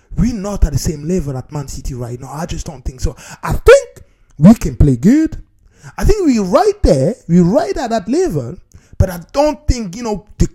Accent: Nigerian